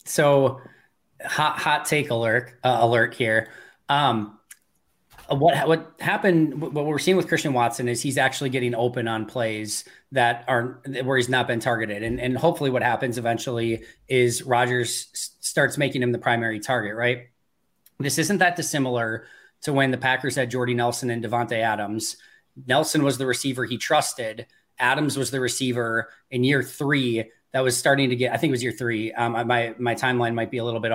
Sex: male